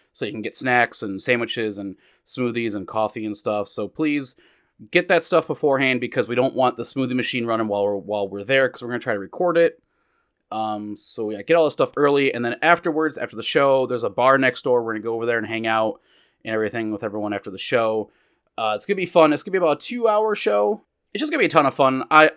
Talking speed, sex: 265 wpm, male